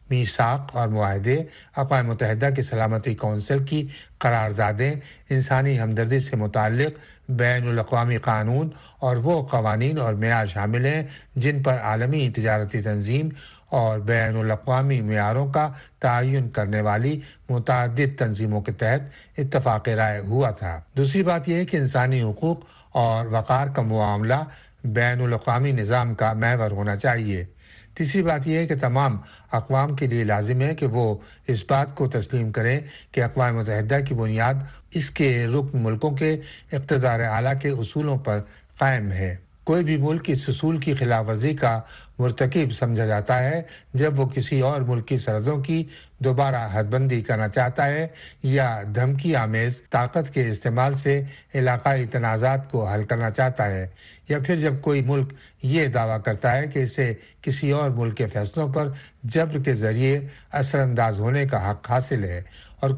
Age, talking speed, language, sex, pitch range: 60-79, 160 wpm, Urdu, male, 115-140 Hz